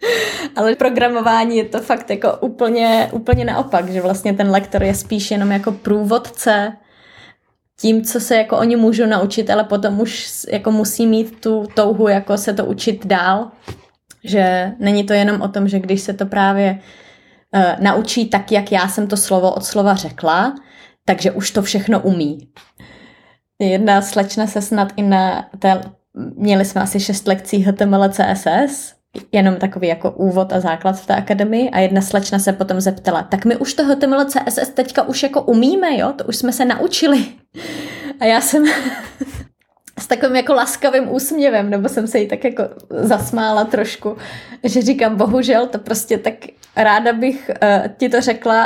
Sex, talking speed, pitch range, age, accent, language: female, 170 wpm, 195-235 Hz, 20-39, native, Czech